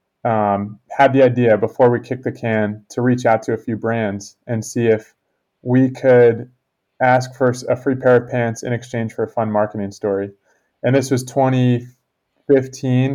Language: English